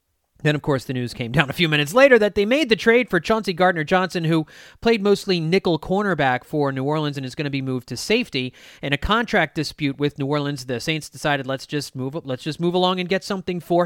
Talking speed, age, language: 250 wpm, 30-49, English